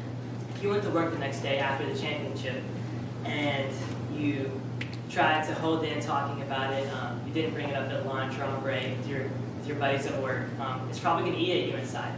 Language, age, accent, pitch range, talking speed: English, 10-29, American, 125-150 Hz, 225 wpm